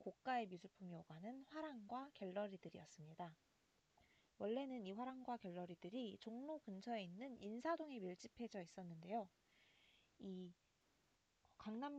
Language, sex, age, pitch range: Korean, female, 20-39, 190-255 Hz